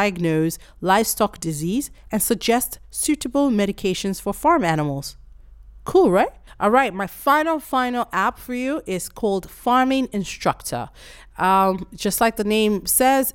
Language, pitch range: English, 185-245 Hz